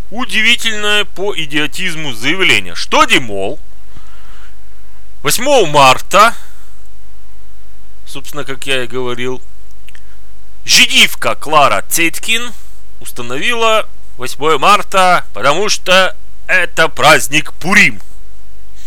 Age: 30-49